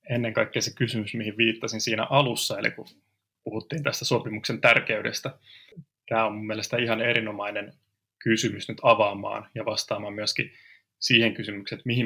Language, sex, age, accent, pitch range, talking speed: Finnish, male, 20-39, native, 110-140 Hz, 150 wpm